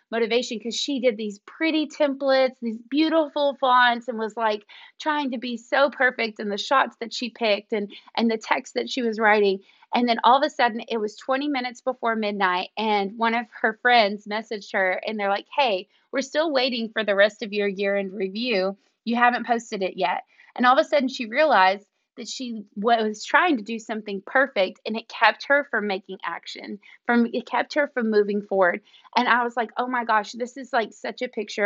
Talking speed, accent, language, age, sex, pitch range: 215 wpm, American, English, 30-49, female, 210-255 Hz